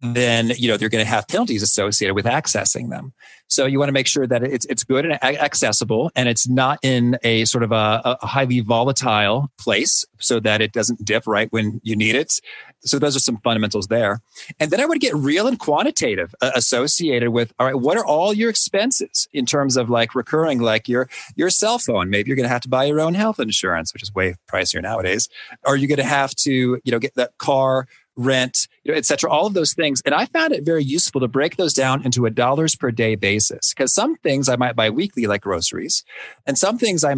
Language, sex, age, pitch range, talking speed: English, male, 30-49, 120-155 Hz, 235 wpm